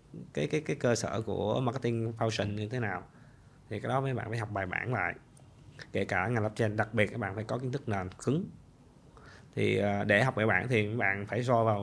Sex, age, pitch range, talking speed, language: male, 20-39, 105-130 Hz, 235 wpm, Vietnamese